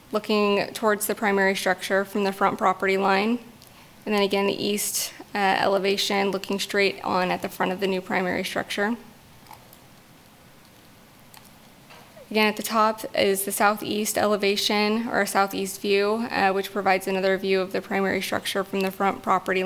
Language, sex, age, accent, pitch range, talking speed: English, female, 20-39, American, 195-210 Hz, 160 wpm